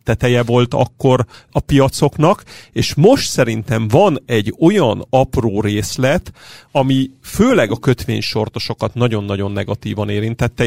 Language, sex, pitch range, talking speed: Hungarian, male, 115-140 Hz, 110 wpm